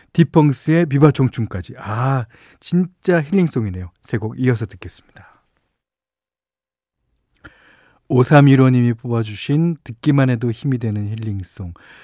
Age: 40-59